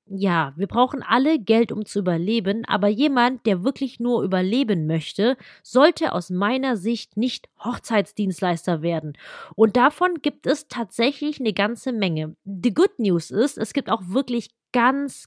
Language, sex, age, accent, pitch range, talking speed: German, female, 30-49, German, 205-280 Hz, 155 wpm